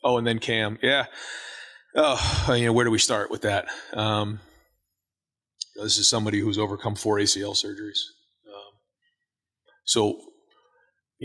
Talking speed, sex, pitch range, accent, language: 150 wpm, male, 100-115 Hz, American, English